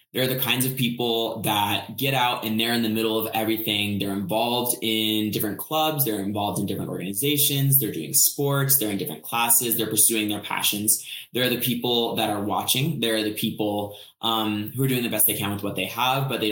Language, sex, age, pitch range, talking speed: English, male, 20-39, 105-120 Hz, 220 wpm